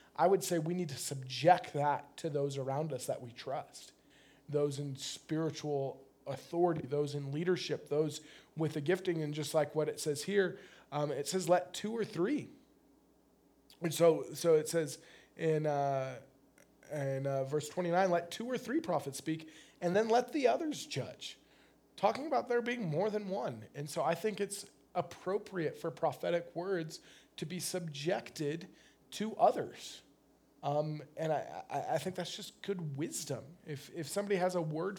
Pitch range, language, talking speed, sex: 150-200 Hz, English, 170 wpm, male